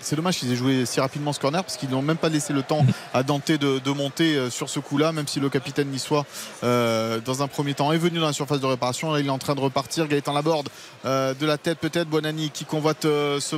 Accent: French